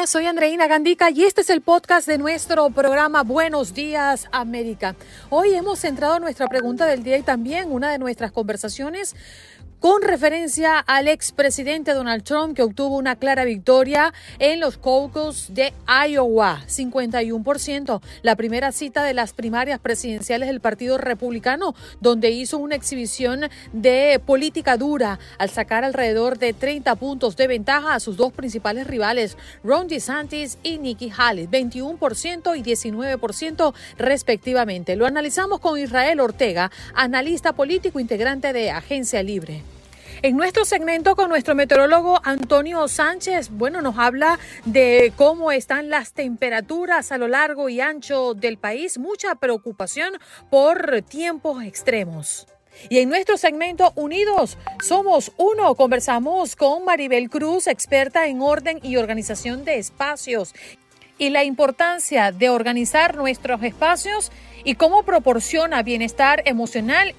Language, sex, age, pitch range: Spanish, female, 40-59, 245-315 Hz